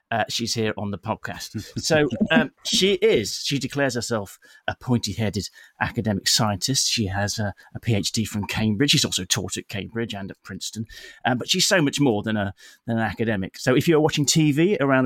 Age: 30-49